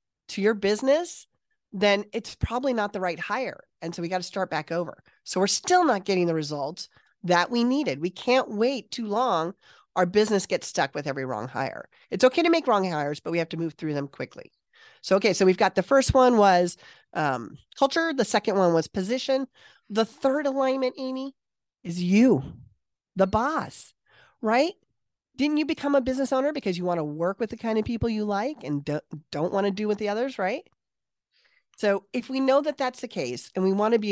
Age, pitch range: 40-59, 180-255 Hz